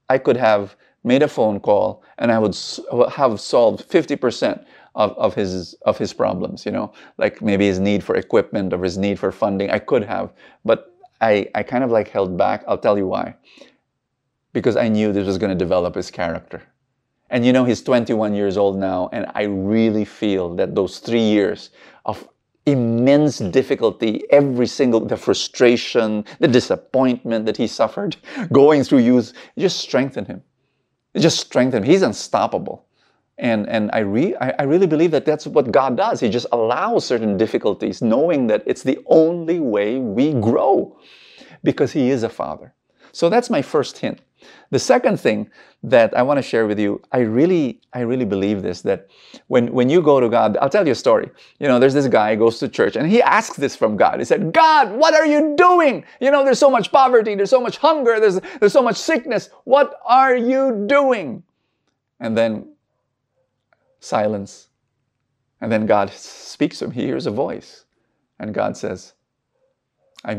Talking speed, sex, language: 185 wpm, male, English